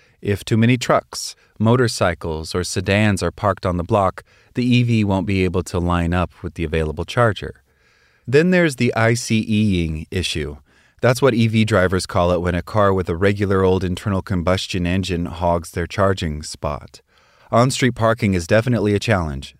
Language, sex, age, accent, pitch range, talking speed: English, male, 30-49, American, 85-110 Hz, 170 wpm